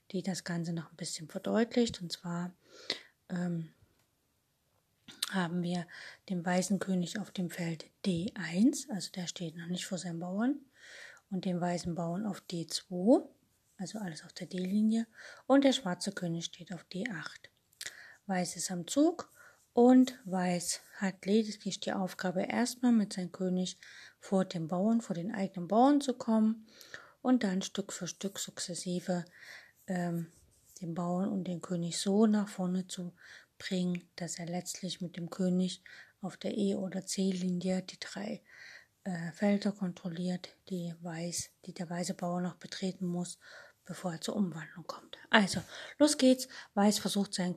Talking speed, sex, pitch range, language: 150 wpm, female, 175-205 Hz, German